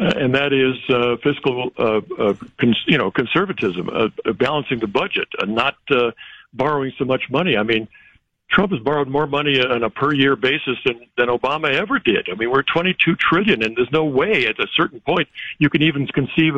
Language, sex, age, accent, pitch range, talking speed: English, male, 60-79, American, 120-150 Hz, 210 wpm